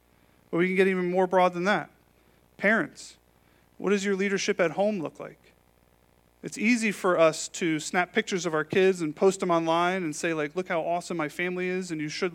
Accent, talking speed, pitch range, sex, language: American, 215 wpm, 140-195 Hz, male, English